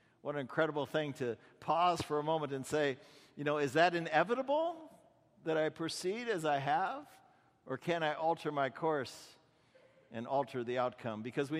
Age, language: 50-69, English